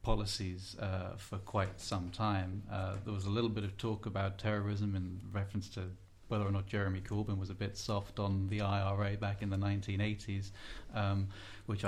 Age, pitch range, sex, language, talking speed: 30-49, 95-110 Hz, male, English, 185 wpm